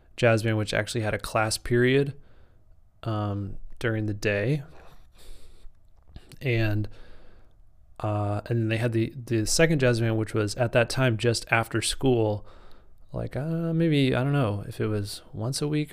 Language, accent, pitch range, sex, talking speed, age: English, American, 105-125 Hz, male, 160 wpm, 20-39